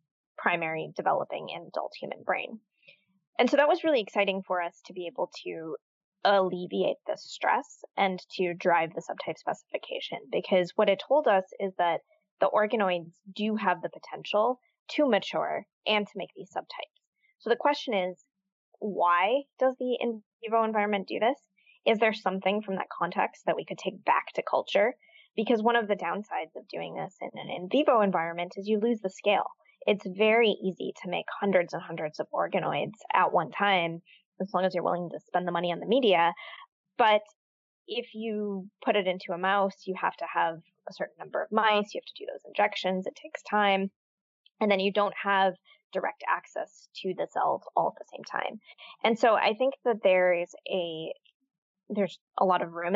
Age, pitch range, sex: 10-29, 180-220 Hz, female